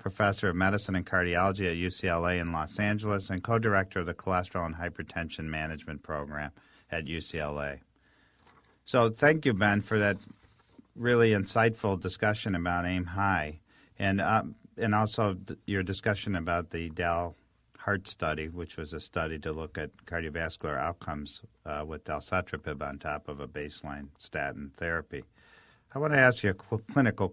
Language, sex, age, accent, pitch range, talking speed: English, male, 50-69, American, 80-105 Hz, 155 wpm